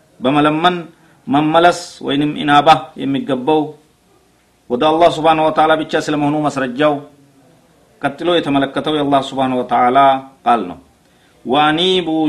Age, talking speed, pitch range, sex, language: 50-69, 110 wpm, 140-180 Hz, male, Amharic